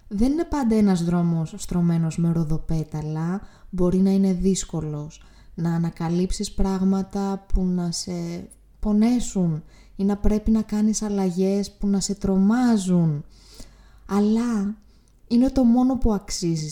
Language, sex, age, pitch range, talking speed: Greek, female, 20-39, 175-220 Hz, 125 wpm